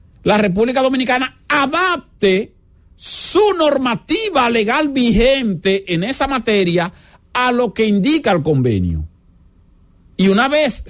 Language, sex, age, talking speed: English, male, 50-69, 110 wpm